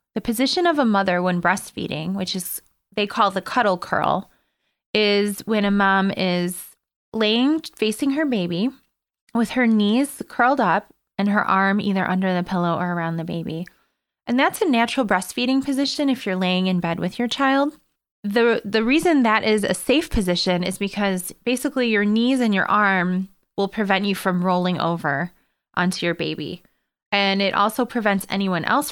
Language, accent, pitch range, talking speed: English, American, 175-220 Hz, 175 wpm